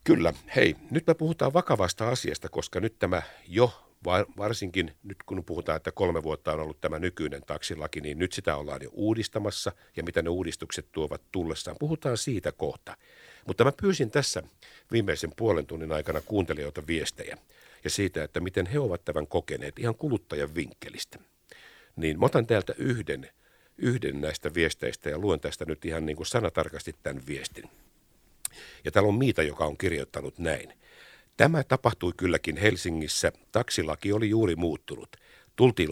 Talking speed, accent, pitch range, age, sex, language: 155 wpm, native, 85-120 Hz, 60-79, male, Finnish